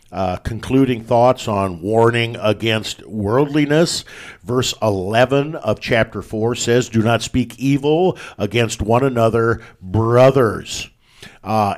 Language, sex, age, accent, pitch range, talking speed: English, male, 50-69, American, 105-125 Hz, 110 wpm